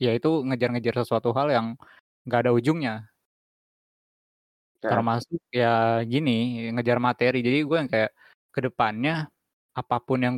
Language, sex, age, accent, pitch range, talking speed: Indonesian, male, 20-39, native, 115-130 Hz, 115 wpm